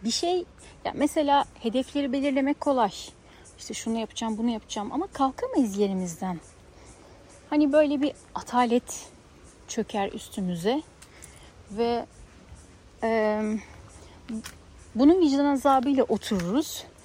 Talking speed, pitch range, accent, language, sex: 95 wpm, 180-275 Hz, native, Turkish, female